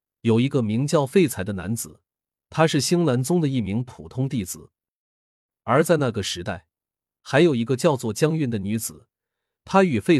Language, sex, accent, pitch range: Chinese, male, native, 100-155 Hz